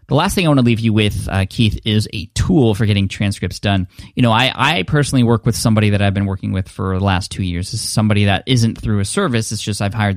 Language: English